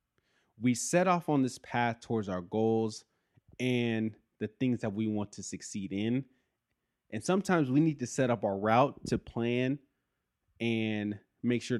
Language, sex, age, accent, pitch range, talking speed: English, male, 20-39, American, 105-130 Hz, 165 wpm